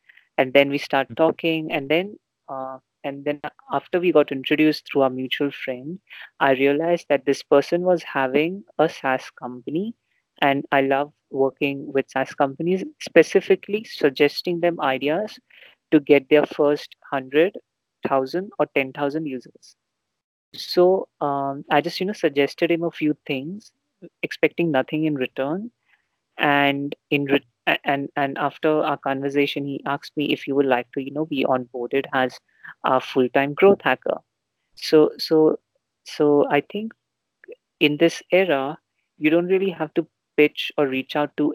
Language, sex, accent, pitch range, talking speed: Hindi, female, native, 140-165 Hz, 155 wpm